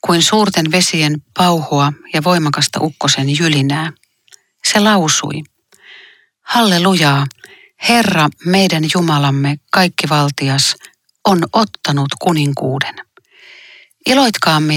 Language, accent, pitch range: Finnish, native, 145-185 Hz